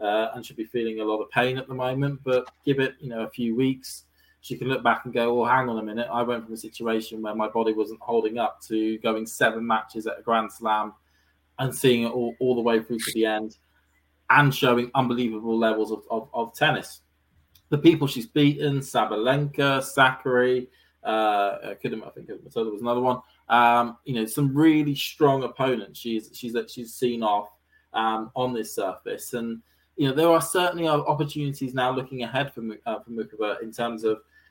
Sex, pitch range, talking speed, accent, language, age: male, 110-130 Hz, 200 wpm, British, English, 20-39